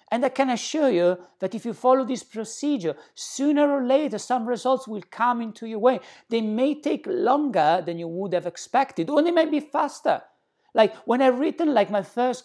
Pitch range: 210-275 Hz